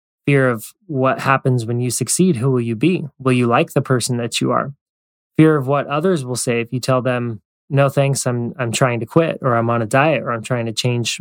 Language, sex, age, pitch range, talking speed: English, male, 20-39, 120-145 Hz, 245 wpm